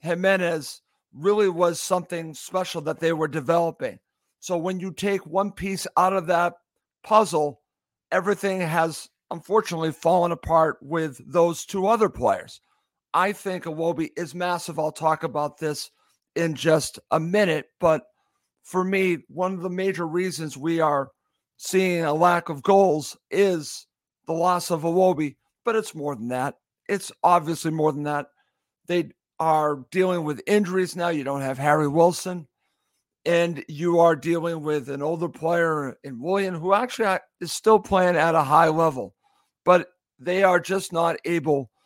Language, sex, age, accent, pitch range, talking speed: English, male, 50-69, American, 155-185 Hz, 155 wpm